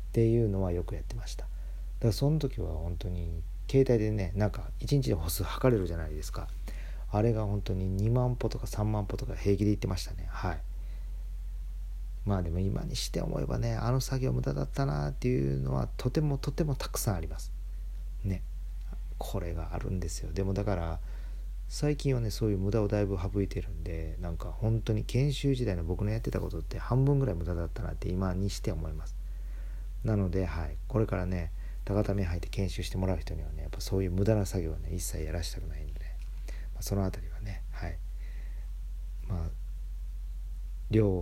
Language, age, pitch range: Japanese, 40-59, 80-105 Hz